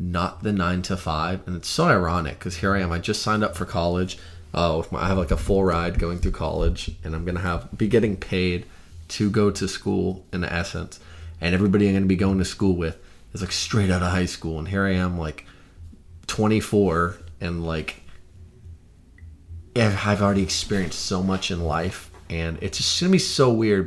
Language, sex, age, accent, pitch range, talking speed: English, male, 20-39, American, 85-100 Hz, 215 wpm